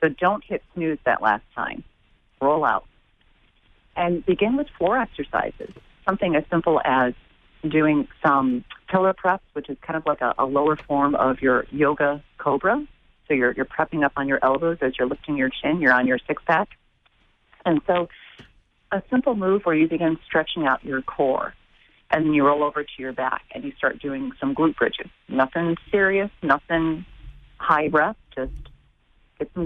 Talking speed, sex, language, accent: 180 wpm, female, English, American